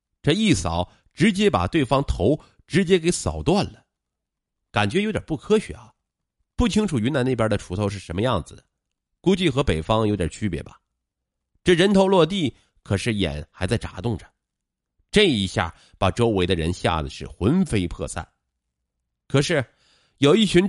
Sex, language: male, Chinese